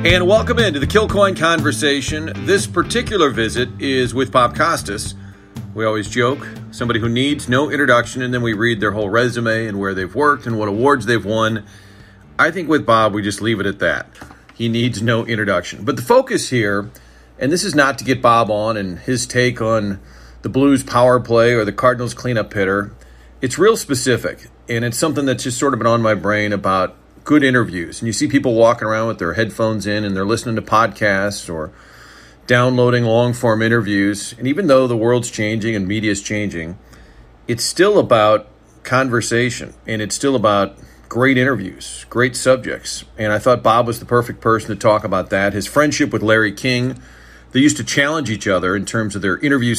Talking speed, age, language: 195 wpm, 40-59, English